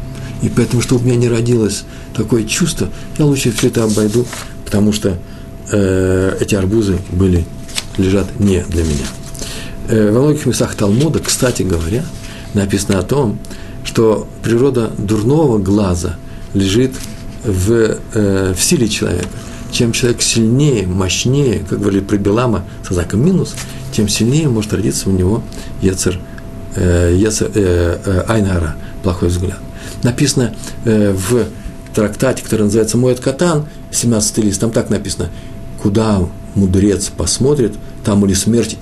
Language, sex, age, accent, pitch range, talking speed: Russian, male, 50-69, native, 95-115 Hz, 135 wpm